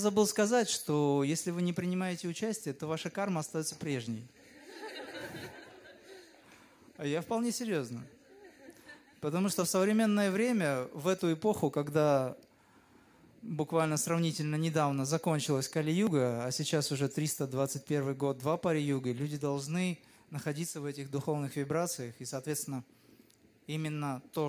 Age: 20-39